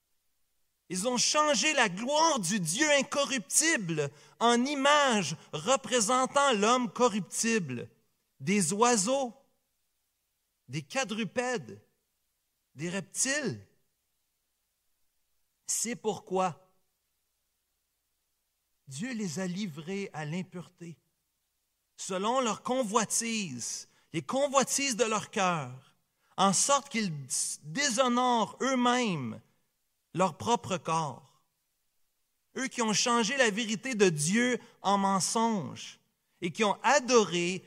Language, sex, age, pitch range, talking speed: French, male, 50-69, 165-245 Hz, 90 wpm